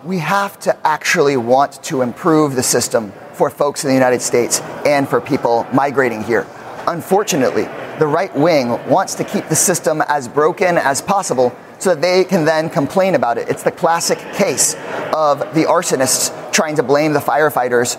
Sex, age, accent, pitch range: male, 30-49, American, 150-200 Hz